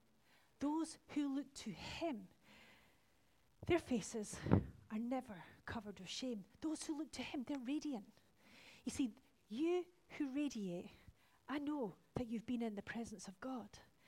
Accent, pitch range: British, 205-255 Hz